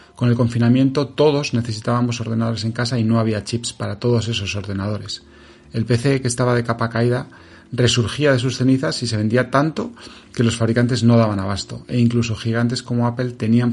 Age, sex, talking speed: 30-49, male, 190 wpm